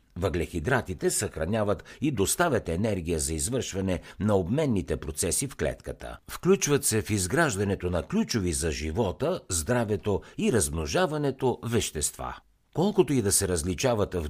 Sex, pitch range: male, 85-125 Hz